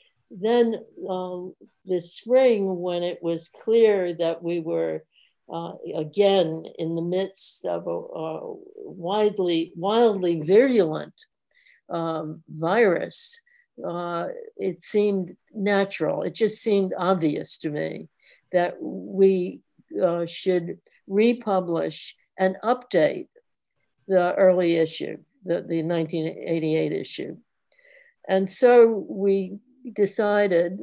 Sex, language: female, English